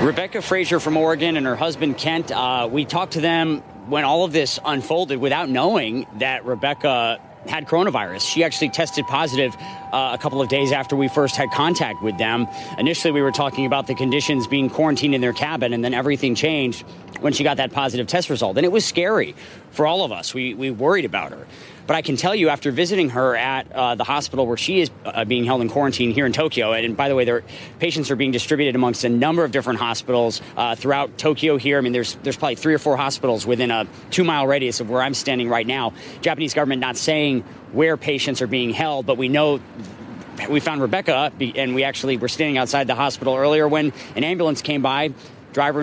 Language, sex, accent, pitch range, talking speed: English, male, American, 125-155 Hz, 220 wpm